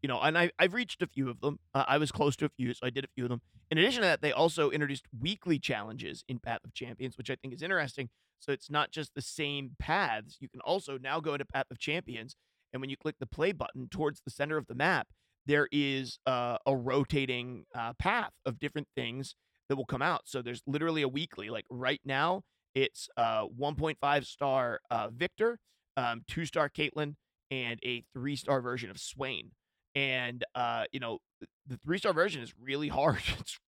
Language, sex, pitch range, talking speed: English, male, 120-150 Hz, 210 wpm